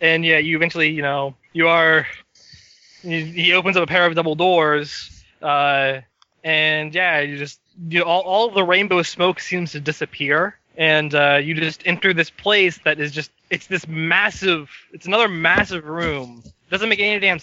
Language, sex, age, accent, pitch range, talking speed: English, male, 20-39, American, 150-185 Hz, 170 wpm